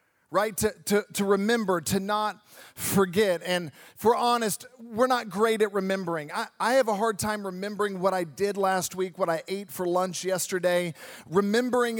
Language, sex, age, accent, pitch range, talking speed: English, male, 40-59, American, 180-215 Hz, 175 wpm